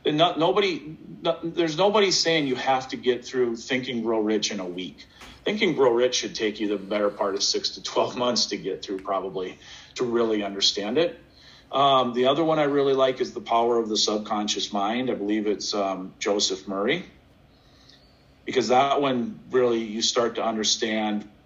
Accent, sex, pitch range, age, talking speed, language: American, male, 100-130 Hz, 40-59, 190 wpm, English